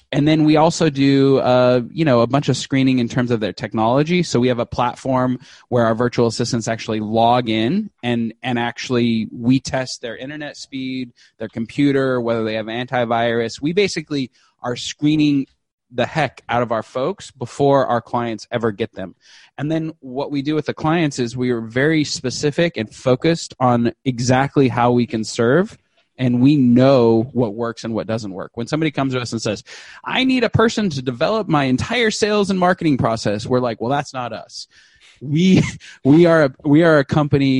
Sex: male